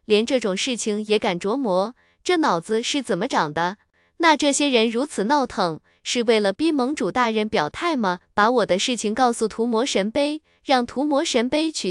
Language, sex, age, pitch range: Chinese, female, 20-39, 215-285 Hz